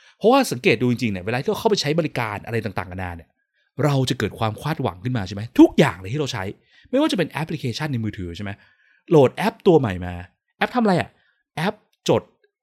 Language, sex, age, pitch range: Thai, male, 20-39, 110-180 Hz